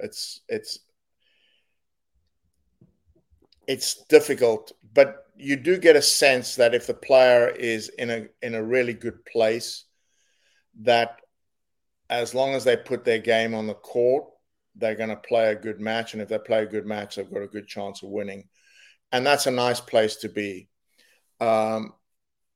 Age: 50-69